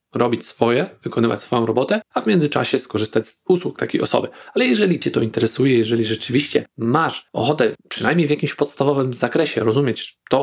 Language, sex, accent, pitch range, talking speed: Polish, male, native, 120-145 Hz, 165 wpm